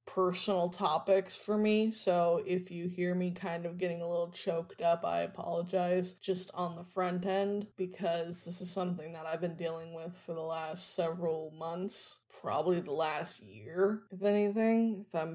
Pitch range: 165-190 Hz